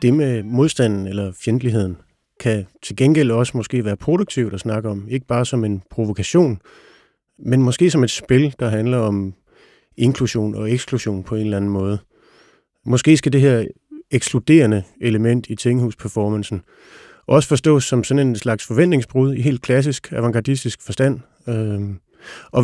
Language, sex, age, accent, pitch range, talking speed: Danish, male, 30-49, native, 110-130 Hz, 150 wpm